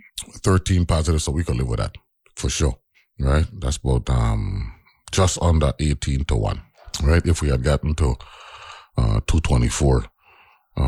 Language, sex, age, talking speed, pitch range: English, male, 30-49, 150 wpm, 65-85 Hz